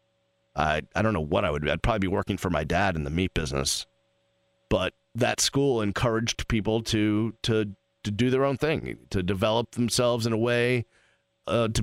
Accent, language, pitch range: American, English, 105-120 Hz